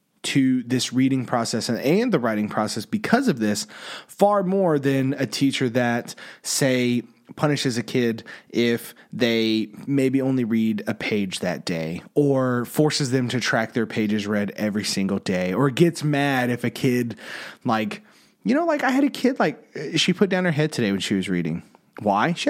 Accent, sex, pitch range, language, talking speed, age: American, male, 115-175 Hz, English, 185 wpm, 30-49